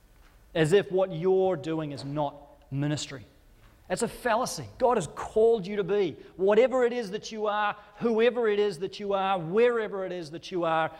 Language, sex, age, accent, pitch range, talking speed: English, male, 30-49, Australian, 175-235 Hz, 190 wpm